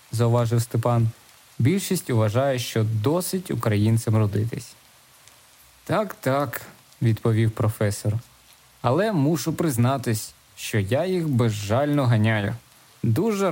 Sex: male